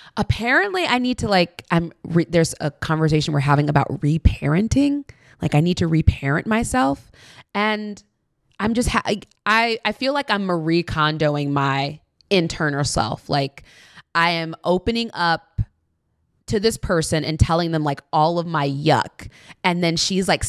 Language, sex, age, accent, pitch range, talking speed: English, female, 20-39, American, 145-190 Hz, 155 wpm